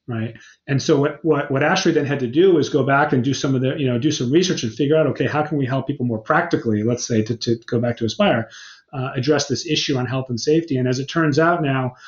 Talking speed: 285 wpm